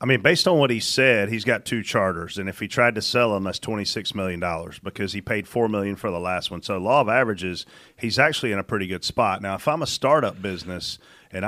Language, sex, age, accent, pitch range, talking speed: English, male, 40-59, American, 110-145 Hz, 260 wpm